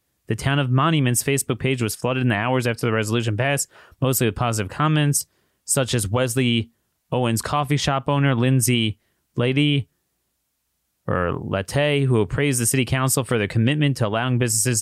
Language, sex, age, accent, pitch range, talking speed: English, male, 30-49, American, 115-185 Hz, 165 wpm